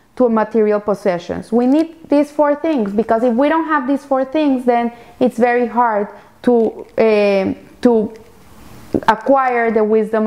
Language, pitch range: English, 225-280 Hz